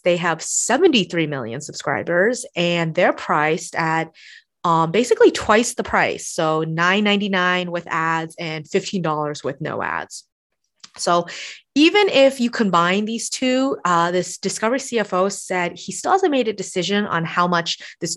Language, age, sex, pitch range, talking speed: English, 20-39, female, 160-210 Hz, 150 wpm